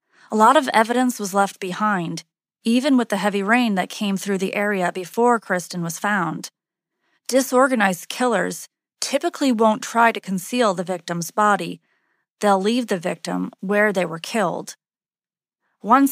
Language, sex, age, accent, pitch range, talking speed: English, female, 30-49, American, 185-240 Hz, 150 wpm